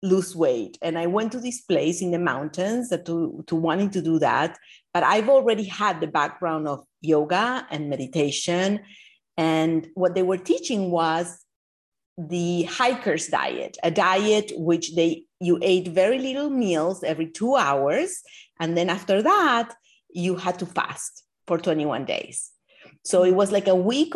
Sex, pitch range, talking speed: female, 165-225 Hz, 160 wpm